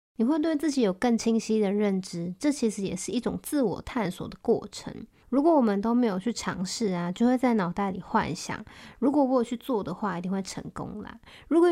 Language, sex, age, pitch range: Chinese, female, 20-39, 195-250 Hz